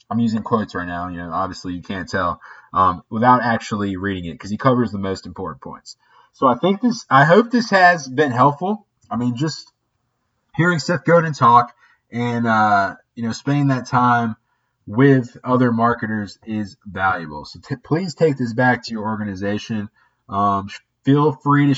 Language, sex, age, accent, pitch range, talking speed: English, male, 20-39, American, 105-135 Hz, 180 wpm